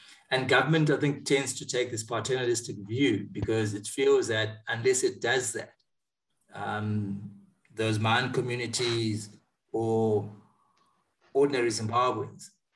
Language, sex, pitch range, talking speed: English, male, 110-135 Hz, 120 wpm